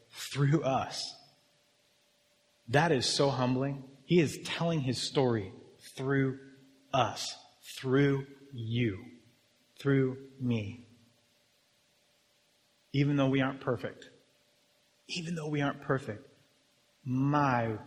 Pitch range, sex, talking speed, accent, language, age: 120-140 Hz, male, 95 wpm, American, English, 30-49